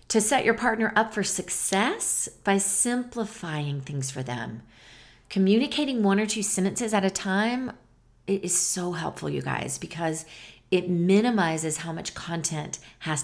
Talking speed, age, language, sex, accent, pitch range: 145 wpm, 40-59, English, female, American, 165-220 Hz